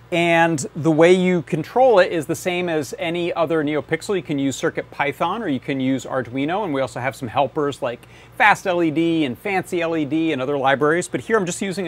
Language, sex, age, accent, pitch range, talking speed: English, male, 40-59, American, 135-170 Hz, 200 wpm